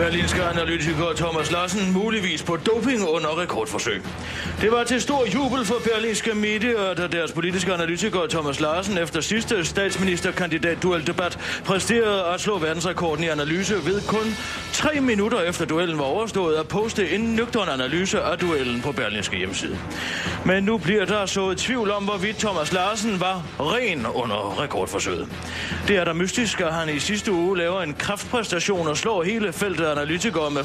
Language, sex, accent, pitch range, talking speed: Danish, male, native, 160-210 Hz, 165 wpm